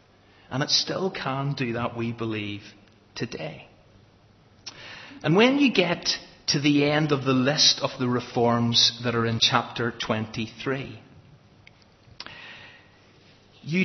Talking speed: 120 wpm